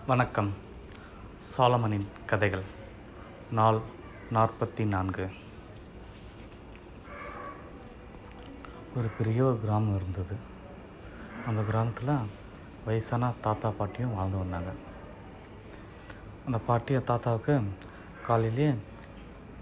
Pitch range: 100-120 Hz